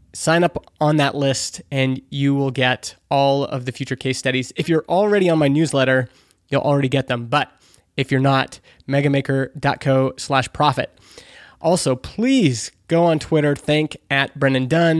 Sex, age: male, 20-39